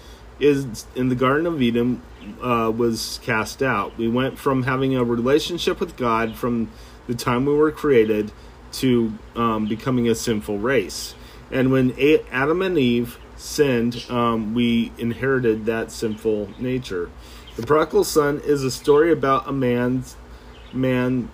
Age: 30-49